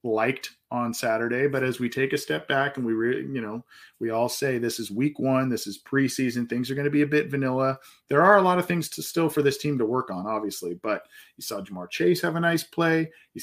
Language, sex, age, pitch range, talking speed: English, male, 40-59, 115-140 Hz, 260 wpm